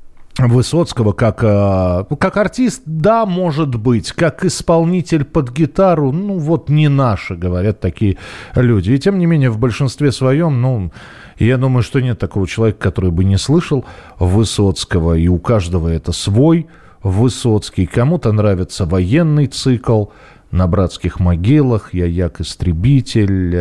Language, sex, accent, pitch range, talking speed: Russian, male, native, 90-125 Hz, 135 wpm